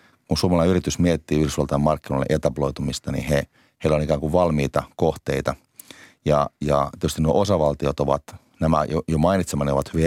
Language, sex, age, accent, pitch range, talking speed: Finnish, male, 30-49, native, 70-80 Hz, 165 wpm